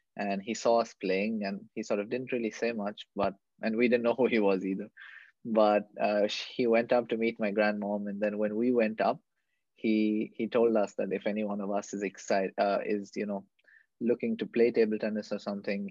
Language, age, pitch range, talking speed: English, 20-39, 105-115 Hz, 225 wpm